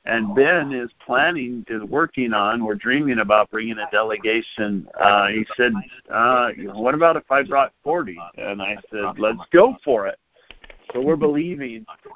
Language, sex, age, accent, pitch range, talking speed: English, male, 50-69, American, 115-145 Hz, 165 wpm